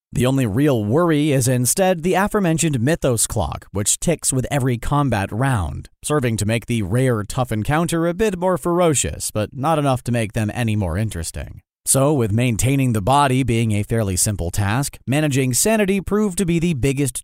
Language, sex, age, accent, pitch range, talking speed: English, male, 30-49, American, 110-140 Hz, 185 wpm